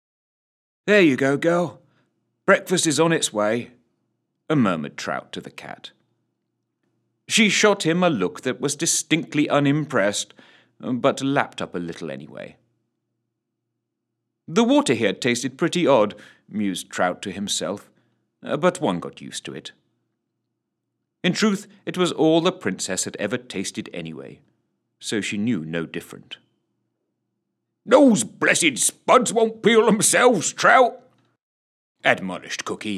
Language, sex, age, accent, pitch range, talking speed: English, male, 40-59, British, 115-170 Hz, 125 wpm